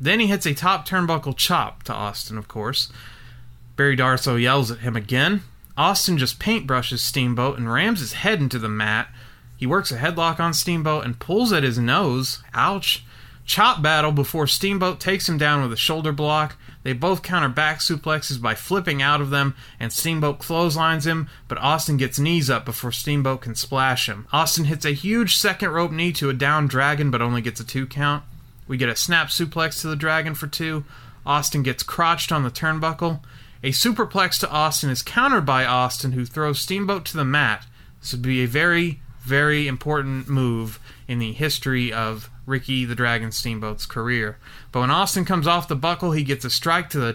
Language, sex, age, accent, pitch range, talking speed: English, male, 30-49, American, 125-160 Hz, 195 wpm